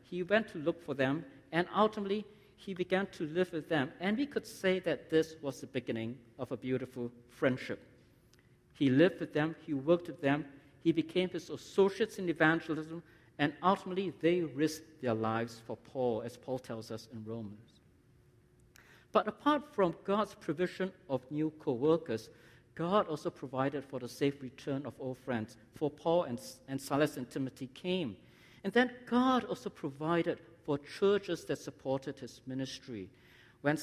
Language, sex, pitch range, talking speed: English, male, 125-170 Hz, 165 wpm